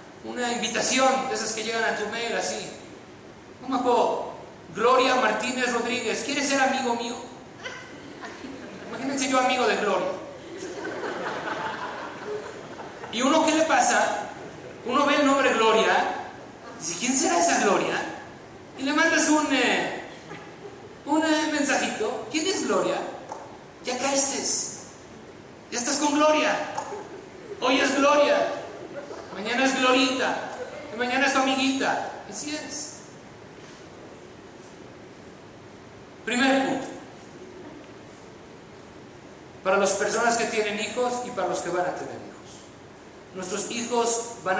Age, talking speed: 40-59, 115 wpm